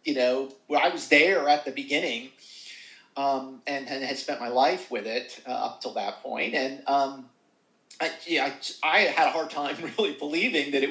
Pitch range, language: 130-185 Hz, English